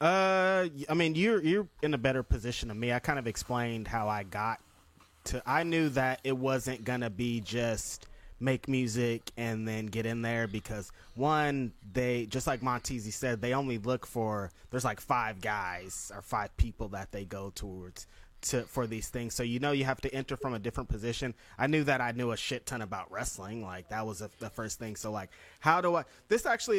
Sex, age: male, 20-39